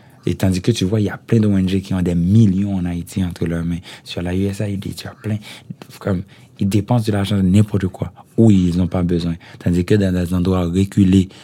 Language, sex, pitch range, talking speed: French, male, 90-110 Hz, 225 wpm